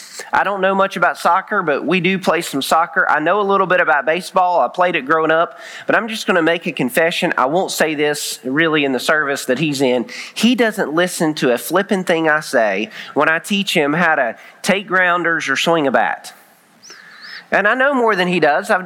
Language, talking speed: English, 230 wpm